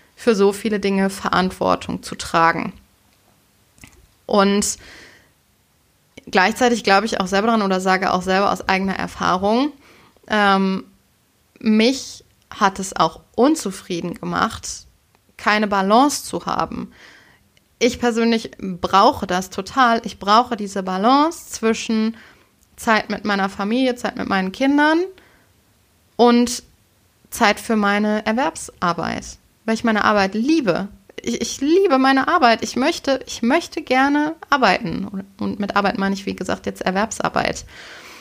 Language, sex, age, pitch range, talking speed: German, female, 20-39, 195-245 Hz, 125 wpm